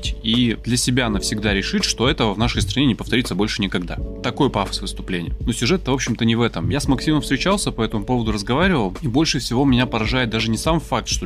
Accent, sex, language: native, male, Russian